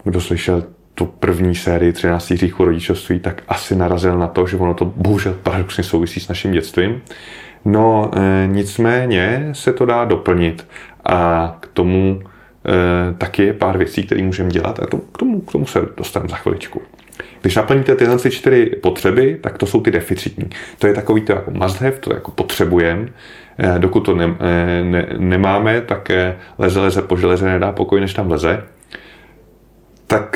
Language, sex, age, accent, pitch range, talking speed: Czech, male, 30-49, native, 90-105 Hz, 170 wpm